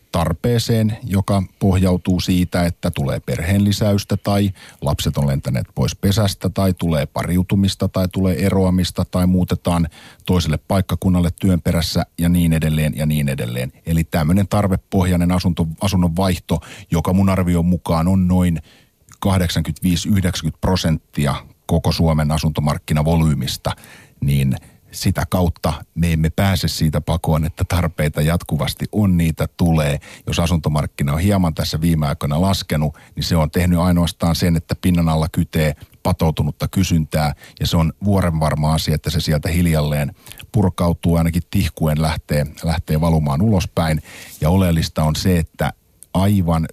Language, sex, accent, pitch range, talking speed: Finnish, male, native, 75-90 Hz, 135 wpm